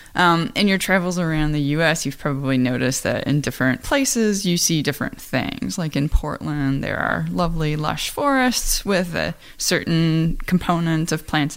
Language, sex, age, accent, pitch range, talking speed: English, female, 20-39, American, 160-210 Hz, 165 wpm